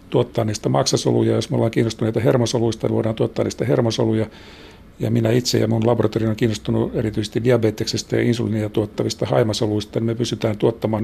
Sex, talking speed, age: male, 170 wpm, 50-69